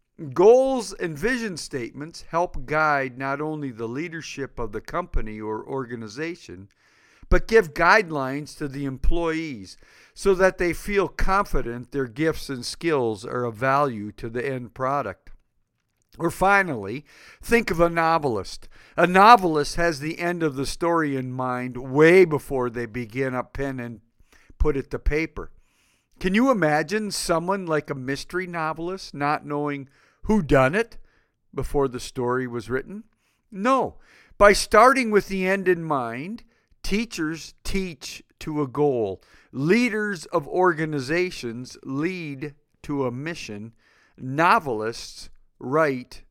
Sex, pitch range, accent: male, 130-180 Hz, American